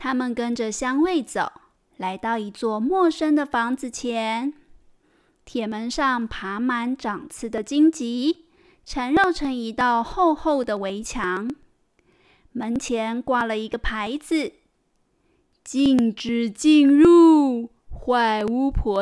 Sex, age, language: female, 20-39, Chinese